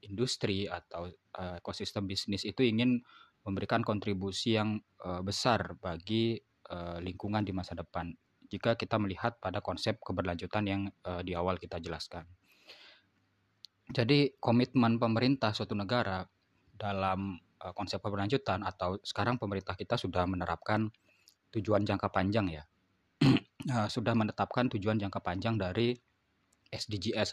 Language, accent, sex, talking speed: Indonesian, native, male, 110 wpm